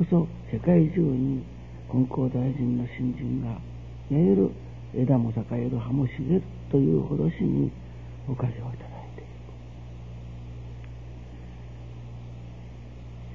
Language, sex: Japanese, male